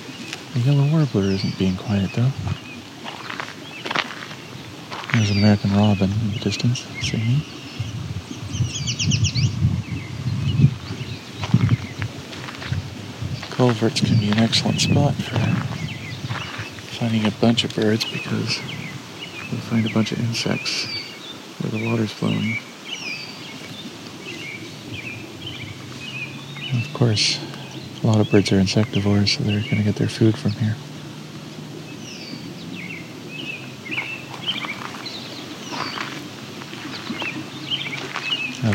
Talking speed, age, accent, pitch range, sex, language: 90 wpm, 50-69, American, 105-125 Hz, male, English